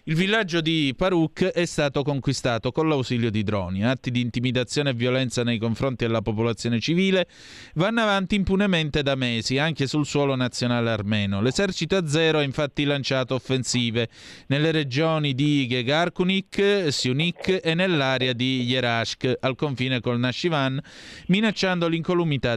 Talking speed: 140 wpm